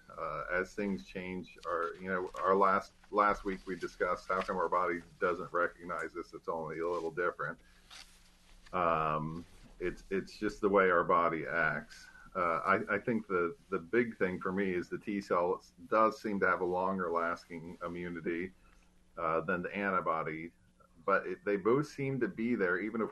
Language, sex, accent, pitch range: English, male, American, 85-115 Hz